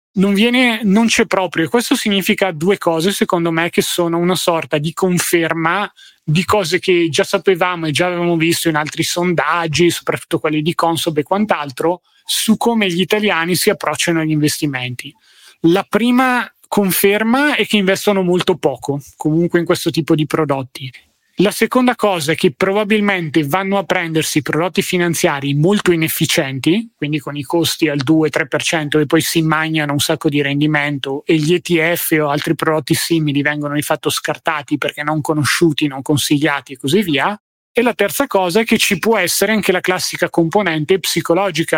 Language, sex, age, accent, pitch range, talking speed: Italian, male, 30-49, native, 155-195 Hz, 170 wpm